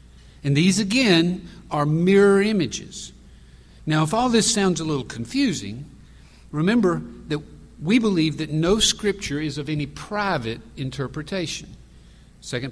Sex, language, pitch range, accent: male, English, 125-195 Hz, American